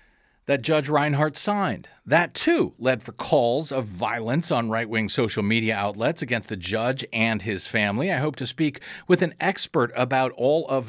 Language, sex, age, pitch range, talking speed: English, male, 40-59, 115-160 Hz, 175 wpm